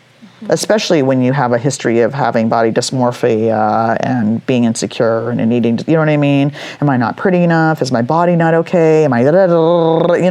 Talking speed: 200 wpm